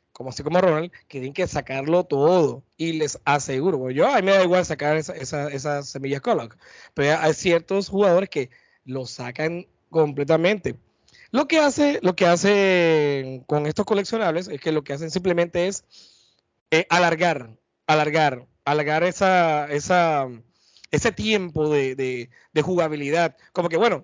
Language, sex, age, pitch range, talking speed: Spanish, male, 30-49, 145-190 Hz, 155 wpm